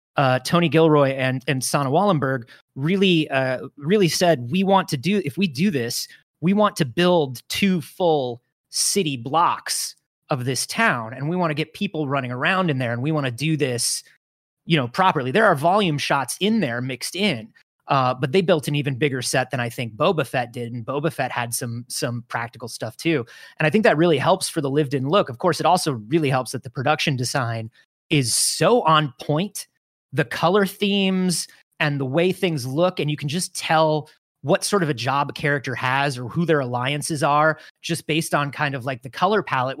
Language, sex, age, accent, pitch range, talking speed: English, male, 30-49, American, 130-170 Hz, 210 wpm